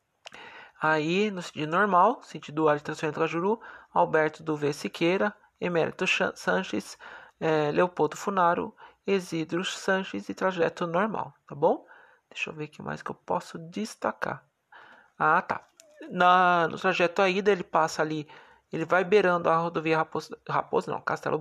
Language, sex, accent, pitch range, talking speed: Portuguese, male, Brazilian, 160-210 Hz, 150 wpm